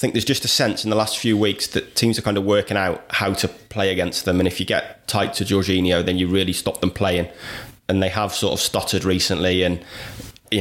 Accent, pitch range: British, 90-105 Hz